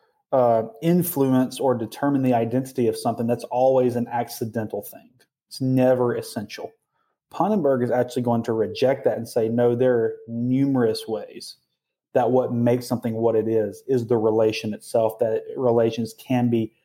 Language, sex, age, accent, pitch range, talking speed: English, male, 30-49, American, 115-135 Hz, 160 wpm